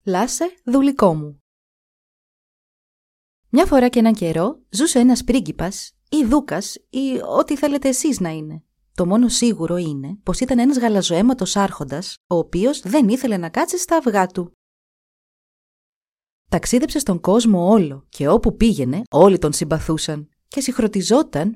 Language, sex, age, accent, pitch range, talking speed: Greek, female, 30-49, native, 160-245 Hz, 135 wpm